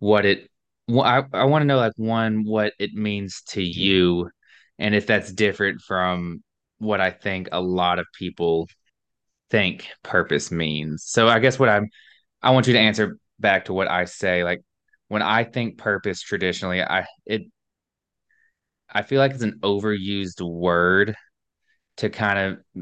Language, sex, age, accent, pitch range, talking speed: English, male, 20-39, American, 95-115 Hz, 165 wpm